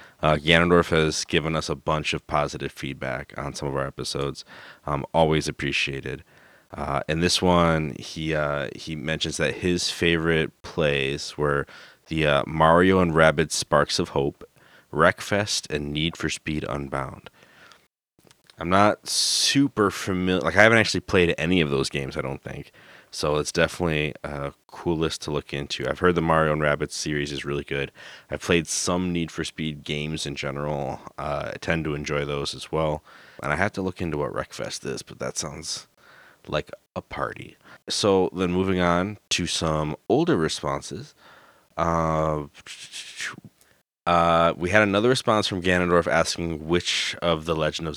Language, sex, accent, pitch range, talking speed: English, male, American, 75-85 Hz, 170 wpm